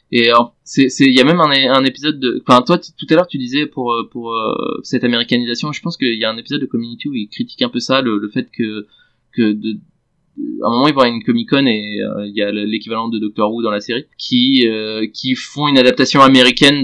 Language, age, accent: French, 20-39, French